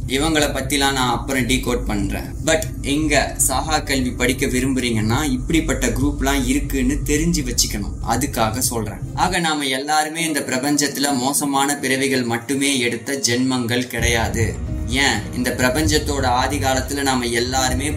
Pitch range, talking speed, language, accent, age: 115-140 Hz, 35 wpm, Tamil, native, 20-39